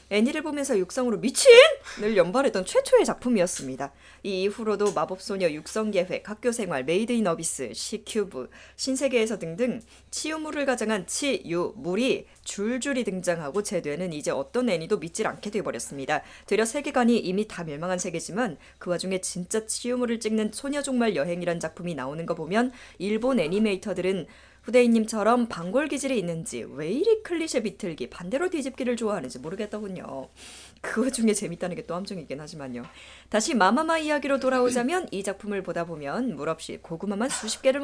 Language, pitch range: Korean, 185-265 Hz